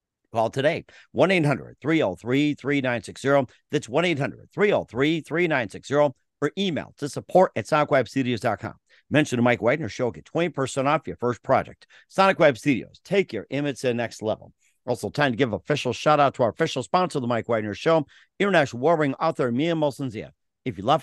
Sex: male